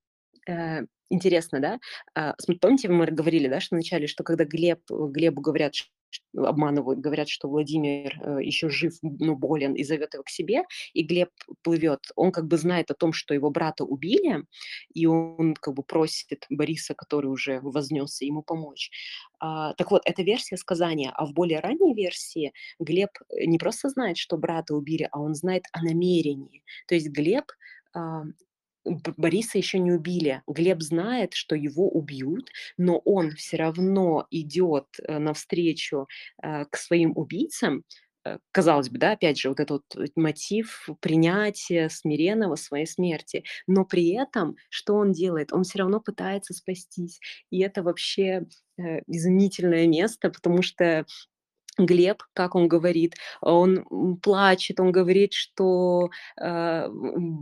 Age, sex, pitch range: 20-39, female, 160-190 Hz